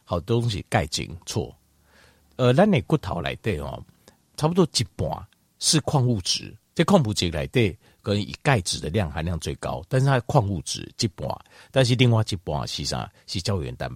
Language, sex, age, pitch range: Chinese, male, 50-69, 95-145 Hz